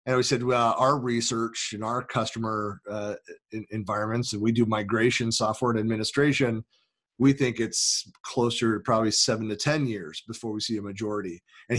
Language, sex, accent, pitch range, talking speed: English, male, American, 110-130 Hz, 175 wpm